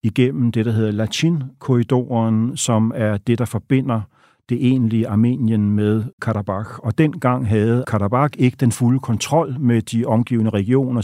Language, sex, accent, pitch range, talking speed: Danish, male, native, 110-125 Hz, 145 wpm